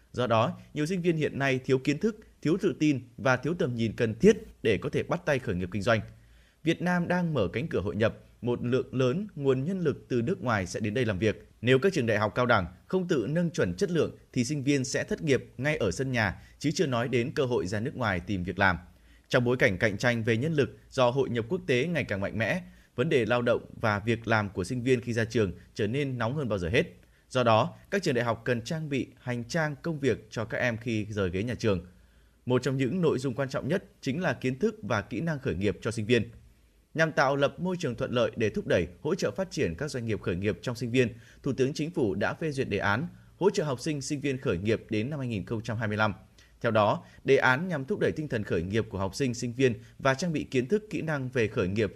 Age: 20-39